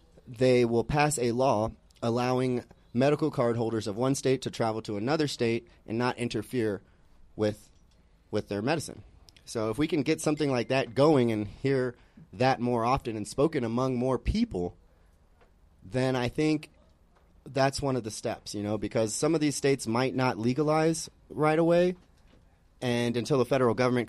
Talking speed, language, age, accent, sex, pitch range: 170 wpm, English, 30-49, American, male, 105-130 Hz